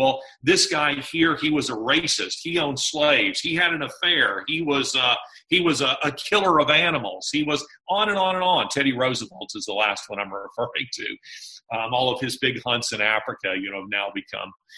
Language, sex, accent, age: English, male, American, 40-59